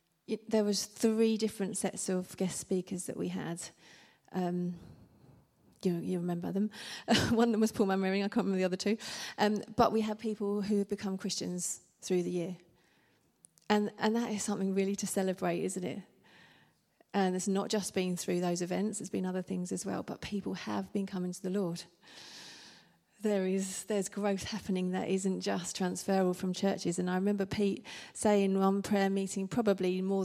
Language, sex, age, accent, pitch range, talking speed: English, female, 30-49, British, 180-205 Hz, 190 wpm